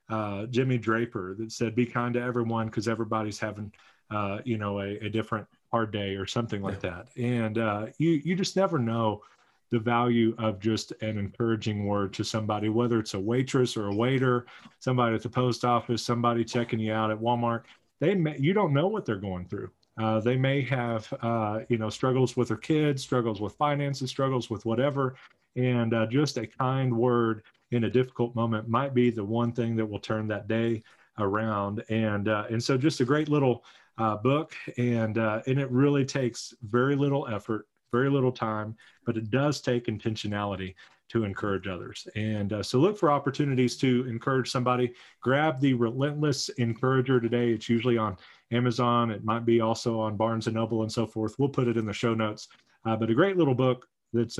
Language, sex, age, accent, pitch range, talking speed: English, male, 40-59, American, 110-125 Hz, 195 wpm